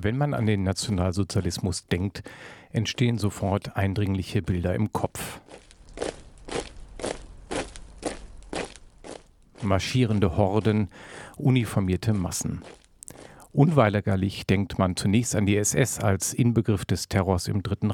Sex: male